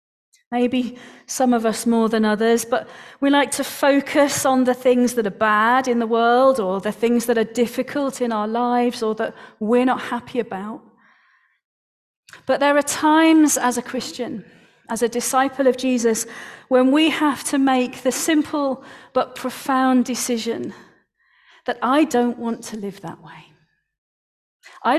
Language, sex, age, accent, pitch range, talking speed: English, female, 40-59, British, 220-260 Hz, 160 wpm